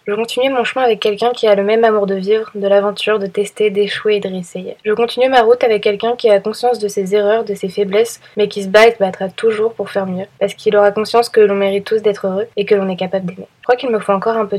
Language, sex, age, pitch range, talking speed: French, female, 20-39, 195-225 Hz, 290 wpm